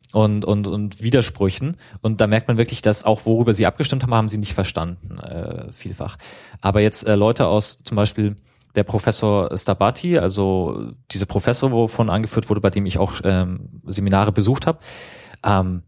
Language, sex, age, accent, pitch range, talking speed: German, male, 30-49, German, 100-120 Hz, 170 wpm